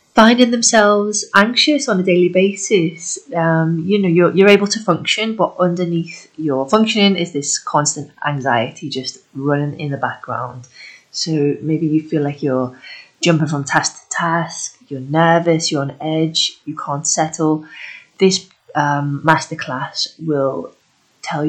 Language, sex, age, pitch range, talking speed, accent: English, female, 30-49, 155-195 Hz, 145 wpm, British